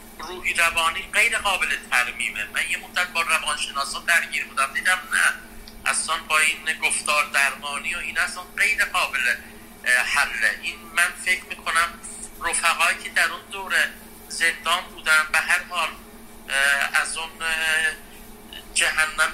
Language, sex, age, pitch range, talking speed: Persian, male, 50-69, 155-215 Hz, 130 wpm